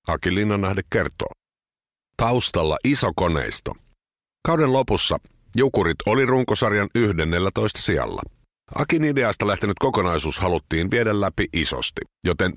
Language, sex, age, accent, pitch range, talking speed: Finnish, male, 50-69, native, 90-120 Hz, 105 wpm